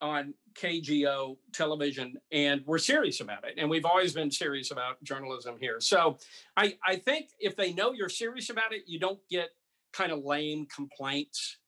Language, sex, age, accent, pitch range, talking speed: English, male, 50-69, American, 150-225 Hz, 175 wpm